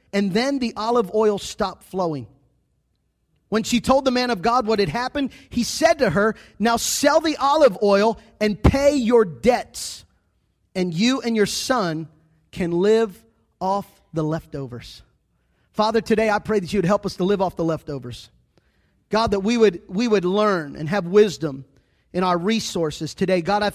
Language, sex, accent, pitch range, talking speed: English, male, American, 175-215 Hz, 175 wpm